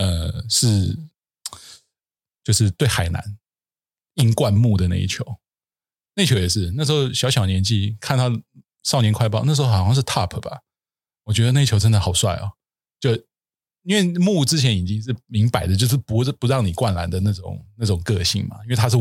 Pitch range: 100-130 Hz